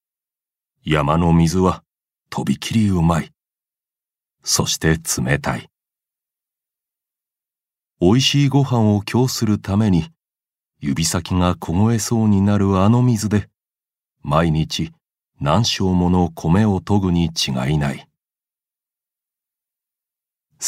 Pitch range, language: 80-115 Hz, Japanese